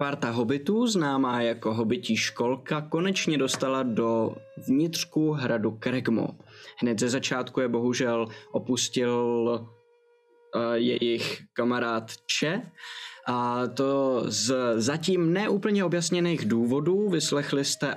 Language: Czech